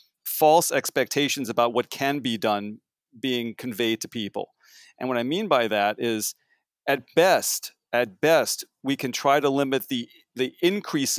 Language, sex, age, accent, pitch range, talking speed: English, male, 40-59, American, 125-155 Hz, 160 wpm